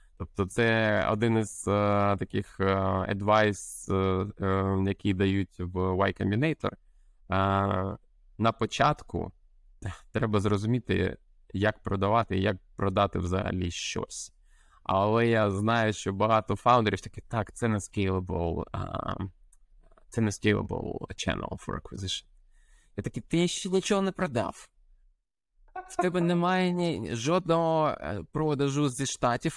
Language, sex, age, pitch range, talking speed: Ukrainian, male, 20-39, 95-135 Hz, 115 wpm